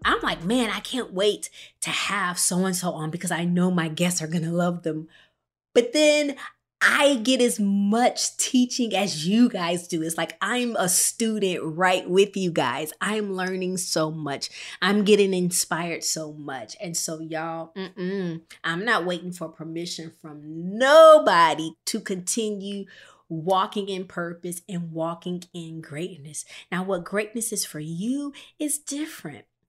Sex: female